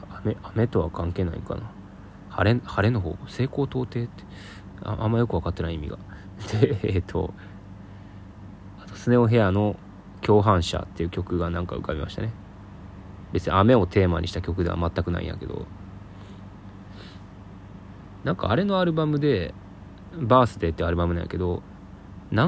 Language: Japanese